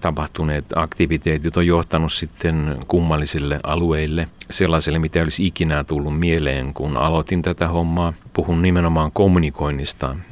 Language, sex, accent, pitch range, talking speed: Finnish, male, native, 75-90 Hz, 115 wpm